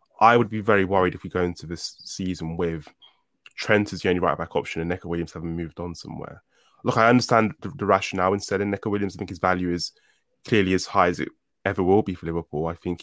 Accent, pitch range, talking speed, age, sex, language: British, 85-100 Hz, 240 wpm, 20-39, male, English